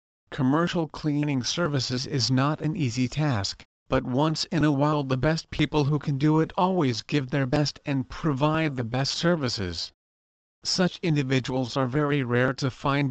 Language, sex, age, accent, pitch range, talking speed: English, male, 50-69, American, 125-150 Hz, 165 wpm